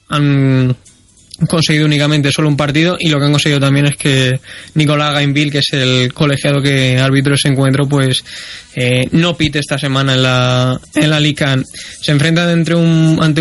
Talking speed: 180 wpm